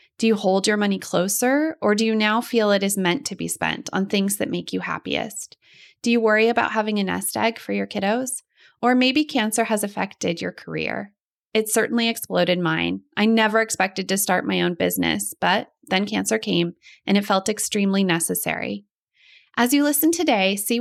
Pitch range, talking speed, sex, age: 180-230 Hz, 195 wpm, female, 20-39